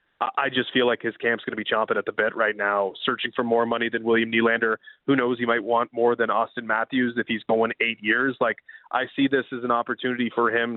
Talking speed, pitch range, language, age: 250 wpm, 115-135 Hz, English, 20-39